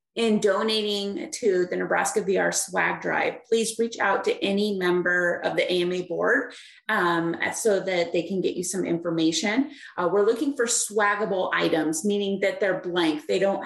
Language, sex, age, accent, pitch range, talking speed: English, female, 30-49, American, 175-215 Hz, 170 wpm